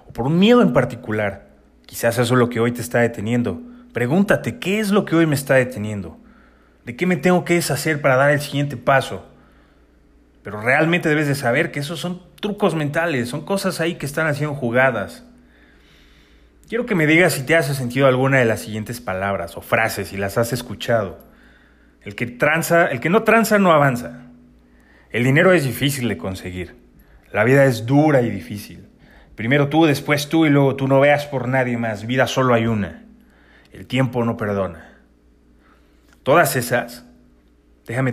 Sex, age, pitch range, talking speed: male, 30-49, 110-145 Hz, 185 wpm